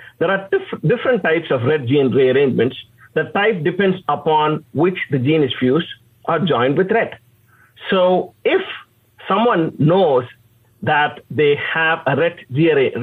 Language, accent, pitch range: English, Indian, 135-210 Hz